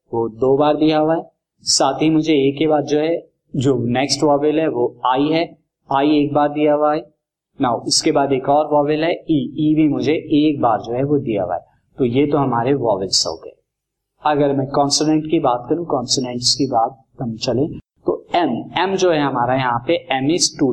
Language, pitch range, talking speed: Hindi, 135-165 Hz, 215 wpm